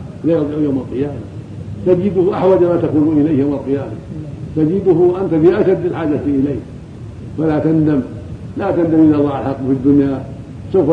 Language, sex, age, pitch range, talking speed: Arabic, male, 50-69, 125-155 Hz, 155 wpm